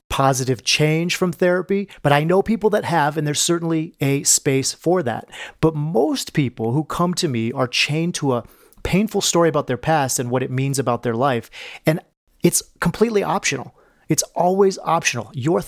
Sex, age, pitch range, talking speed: male, 30-49, 135-180 Hz, 185 wpm